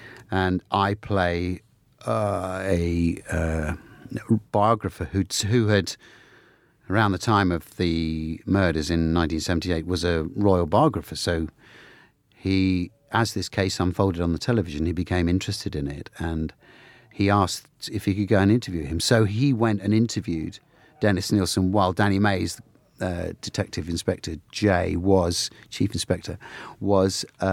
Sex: male